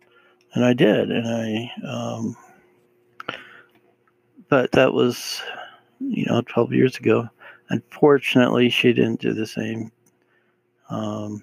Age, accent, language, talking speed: 60-79, American, English, 110 wpm